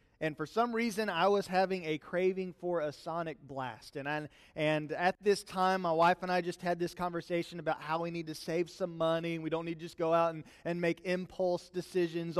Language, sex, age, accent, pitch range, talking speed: English, male, 30-49, American, 155-190 Hz, 230 wpm